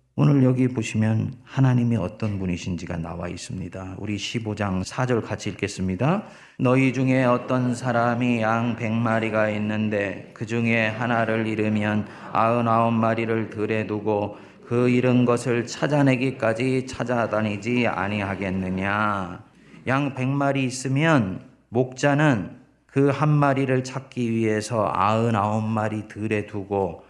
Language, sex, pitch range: Korean, male, 100-125 Hz